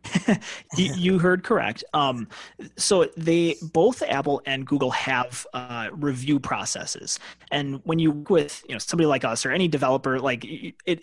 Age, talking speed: 30-49, 160 wpm